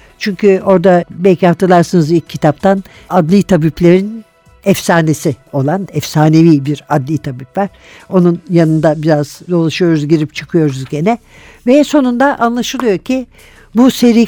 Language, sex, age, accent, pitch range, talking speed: Turkish, female, 60-79, native, 170-235 Hz, 120 wpm